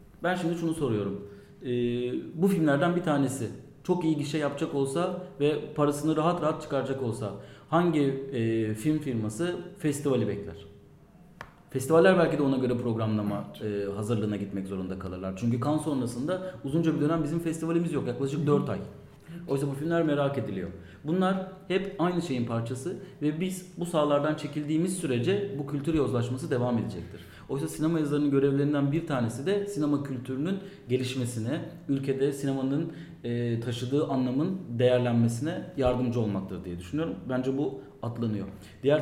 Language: Turkish